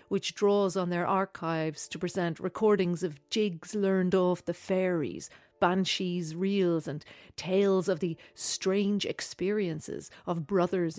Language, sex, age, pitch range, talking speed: English, female, 40-59, 170-215 Hz, 130 wpm